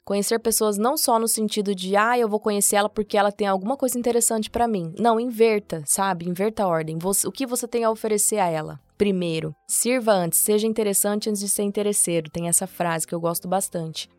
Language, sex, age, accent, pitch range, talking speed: Portuguese, female, 20-39, Brazilian, 185-230 Hz, 210 wpm